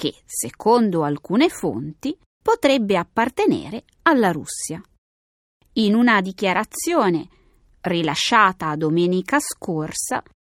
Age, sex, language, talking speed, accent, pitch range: 30-49, female, Italian, 80 wpm, native, 170-285 Hz